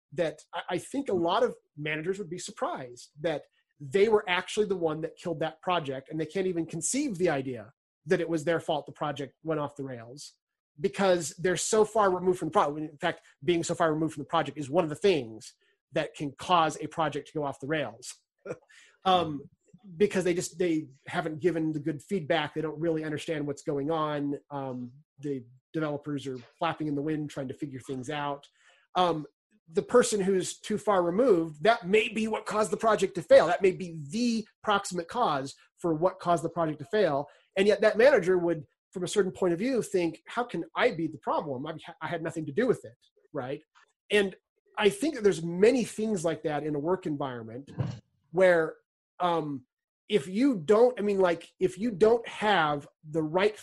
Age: 30-49